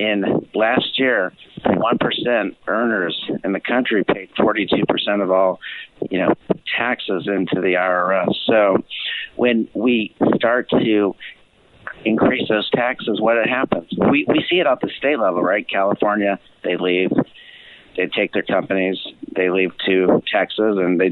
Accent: American